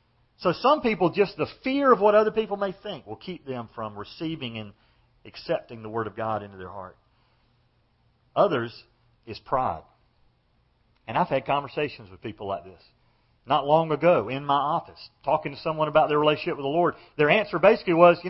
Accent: American